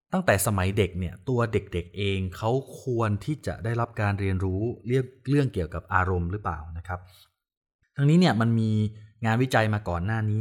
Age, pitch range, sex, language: 20-39, 90-115 Hz, male, Thai